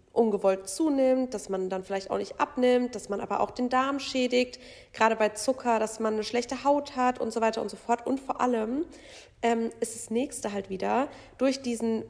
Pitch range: 200-250 Hz